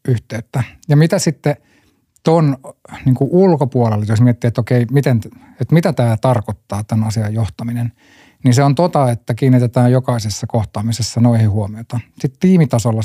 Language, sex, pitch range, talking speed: Finnish, male, 110-130 Hz, 145 wpm